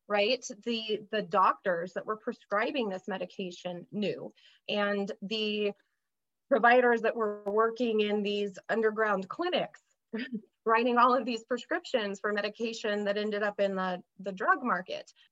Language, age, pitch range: English, 20-39, 200-240 Hz